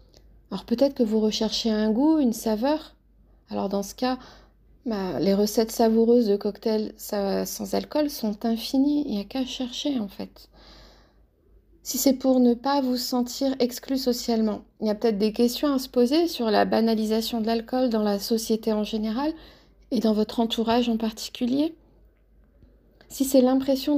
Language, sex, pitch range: French, female, 225-260 Hz